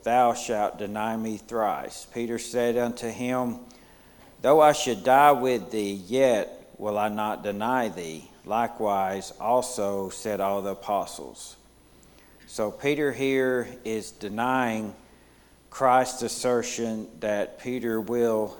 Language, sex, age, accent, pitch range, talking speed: English, male, 60-79, American, 100-130 Hz, 120 wpm